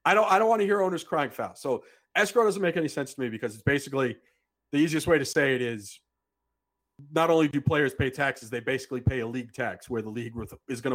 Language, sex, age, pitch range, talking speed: English, male, 40-59, 130-175 Hz, 250 wpm